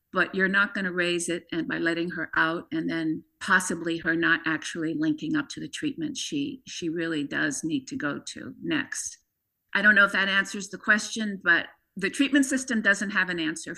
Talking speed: 205 wpm